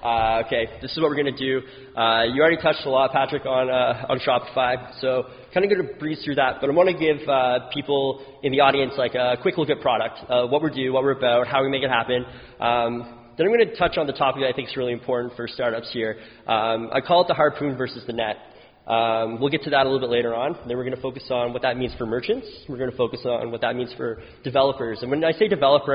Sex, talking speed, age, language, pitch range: male, 275 wpm, 20-39, English, 115-135 Hz